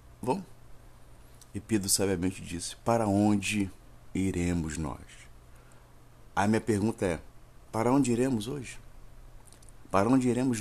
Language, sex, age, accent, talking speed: Portuguese, male, 50-69, Brazilian, 105 wpm